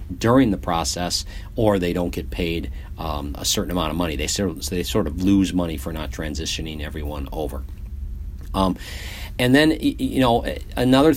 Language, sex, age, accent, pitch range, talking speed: English, male, 50-69, American, 85-105 Hz, 165 wpm